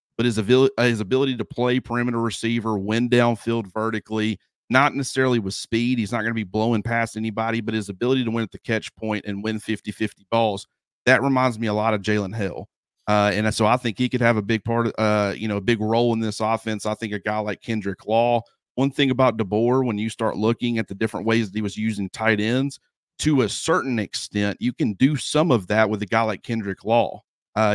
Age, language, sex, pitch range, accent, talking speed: 40-59, English, male, 105-120 Hz, American, 230 wpm